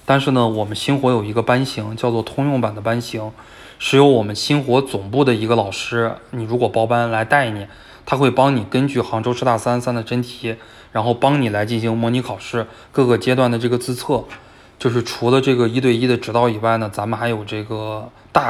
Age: 20-39